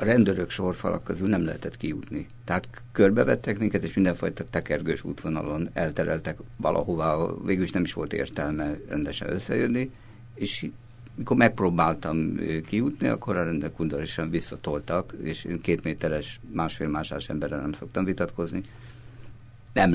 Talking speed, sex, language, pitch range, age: 130 wpm, male, Hungarian, 85-115 Hz, 50-69